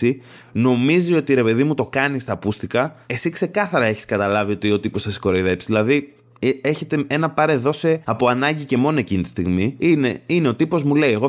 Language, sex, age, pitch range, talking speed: Greek, male, 20-39, 110-150 Hz, 195 wpm